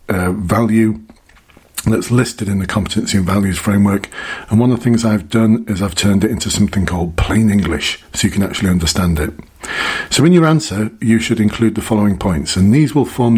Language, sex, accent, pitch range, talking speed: English, male, British, 95-115 Hz, 205 wpm